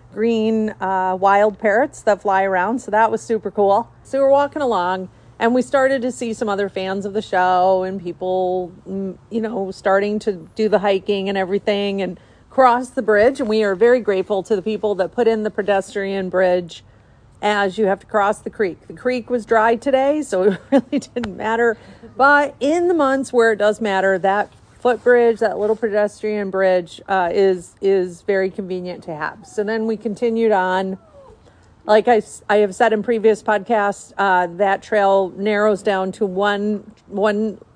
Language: English